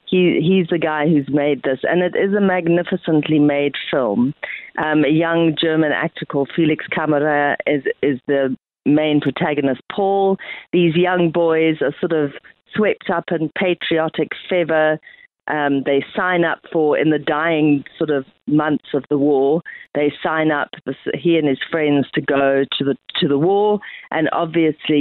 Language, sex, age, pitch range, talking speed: English, female, 40-59, 140-165 Hz, 170 wpm